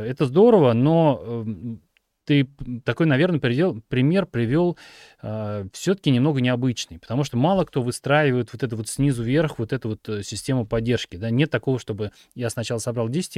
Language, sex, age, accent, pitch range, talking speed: Russian, male, 30-49, native, 110-145 Hz, 170 wpm